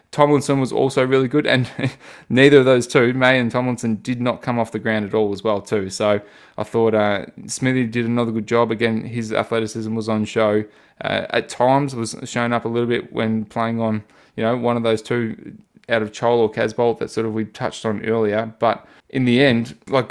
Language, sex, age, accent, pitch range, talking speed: English, male, 20-39, Australian, 105-120 Hz, 225 wpm